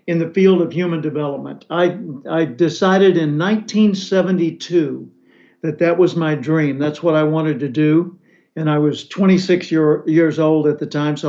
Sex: male